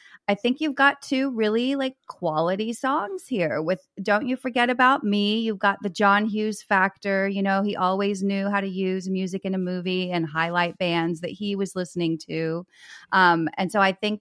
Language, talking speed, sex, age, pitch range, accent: English, 200 wpm, female, 30-49, 170-225 Hz, American